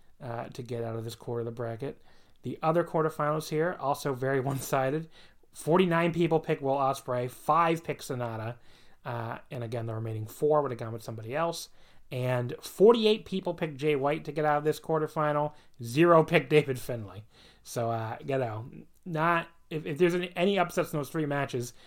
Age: 30-49